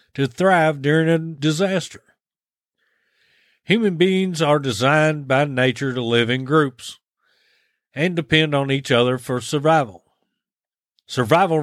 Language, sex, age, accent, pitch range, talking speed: English, male, 40-59, American, 130-175 Hz, 120 wpm